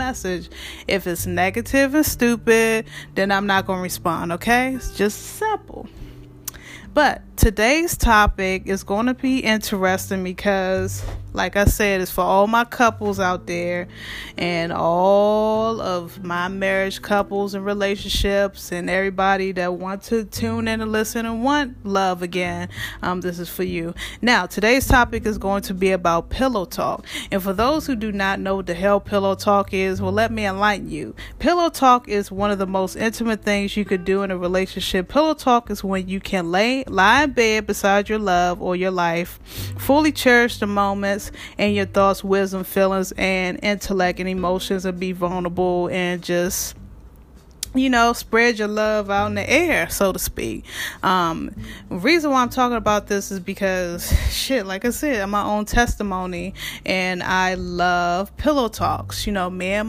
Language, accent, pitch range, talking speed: English, American, 185-220 Hz, 175 wpm